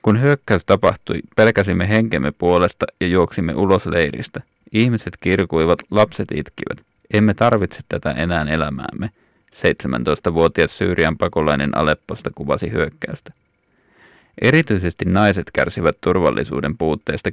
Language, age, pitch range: Finnish, 30-49, 80-100 Hz